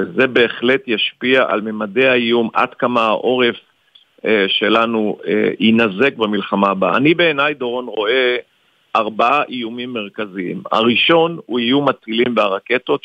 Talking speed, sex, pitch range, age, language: 115 wpm, male, 110-125 Hz, 50-69, Hebrew